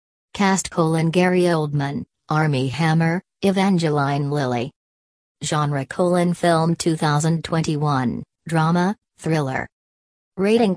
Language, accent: English, American